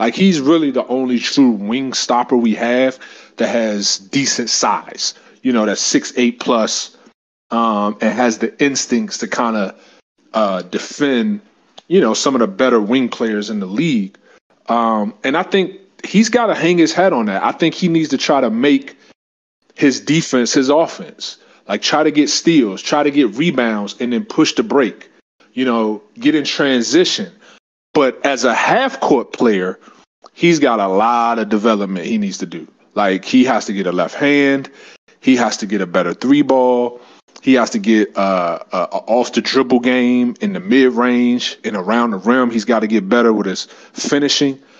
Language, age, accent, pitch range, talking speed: English, 30-49, American, 115-165 Hz, 185 wpm